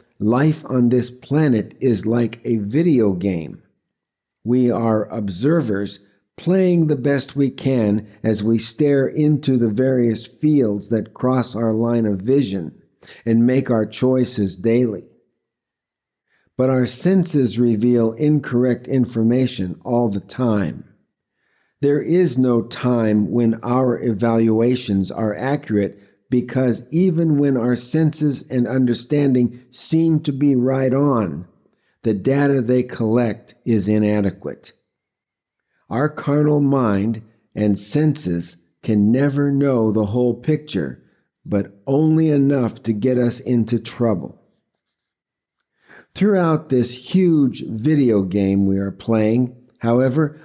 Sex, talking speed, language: male, 120 wpm, English